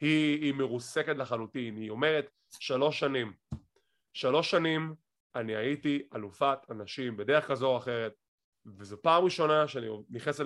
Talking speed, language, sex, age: 120 wpm, English, male, 30-49